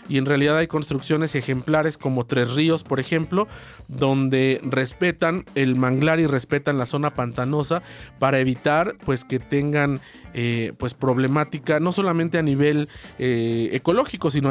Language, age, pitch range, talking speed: Spanish, 40-59, 135-170 Hz, 135 wpm